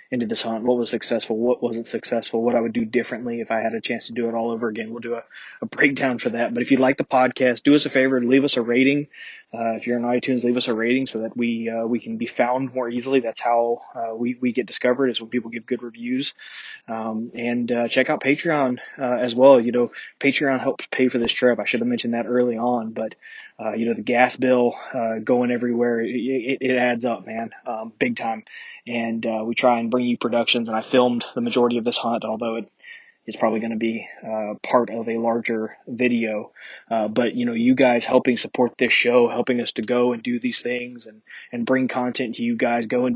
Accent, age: American, 20-39